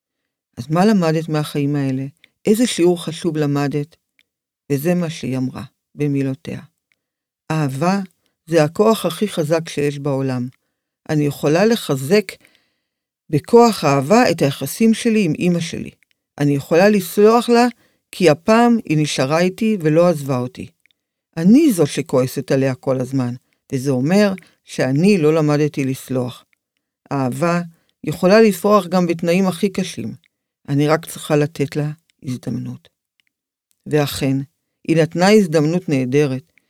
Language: Hebrew